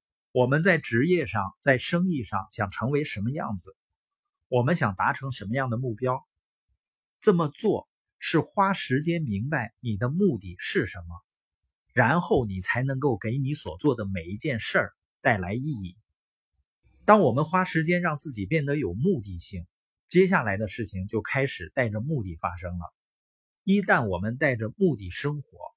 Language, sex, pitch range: Chinese, male, 100-155 Hz